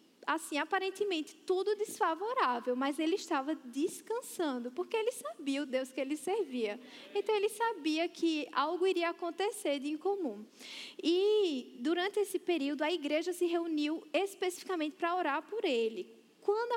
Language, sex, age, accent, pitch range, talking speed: Portuguese, female, 10-29, Brazilian, 275-375 Hz, 140 wpm